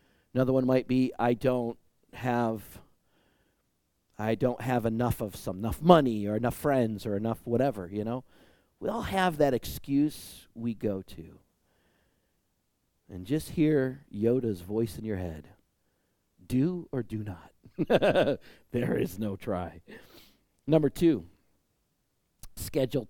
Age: 40-59